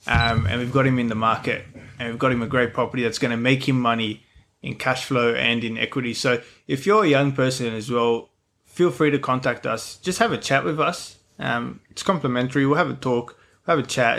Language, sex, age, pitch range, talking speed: English, male, 20-39, 115-135 Hz, 235 wpm